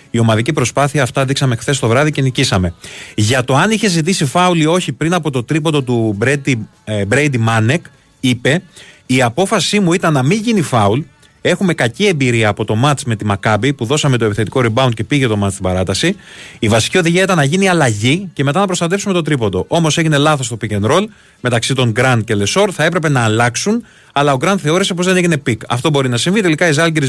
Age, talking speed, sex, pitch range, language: 30-49, 220 wpm, male, 125-175 Hz, Greek